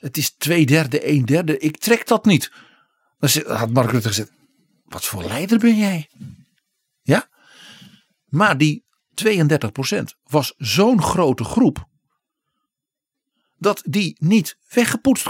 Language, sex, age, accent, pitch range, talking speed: Dutch, male, 50-69, Dutch, 130-210 Hz, 125 wpm